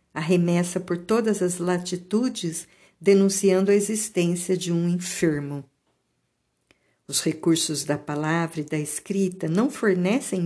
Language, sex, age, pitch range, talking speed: Portuguese, female, 50-69, 160-195 Hz, 115 wpm